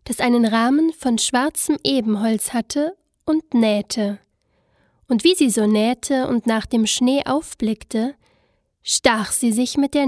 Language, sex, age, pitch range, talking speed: German, female, 20-39, 225-280 Hz, 145 wpm